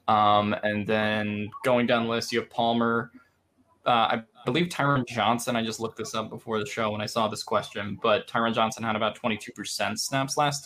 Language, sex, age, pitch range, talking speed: English, male, 10-29, 105-125 Hz, 205 wpm